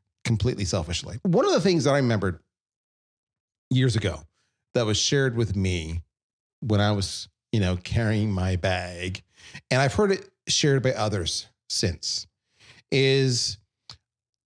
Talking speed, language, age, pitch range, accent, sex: 135 wpm, English, 40-59, 100-130 Hz, American, male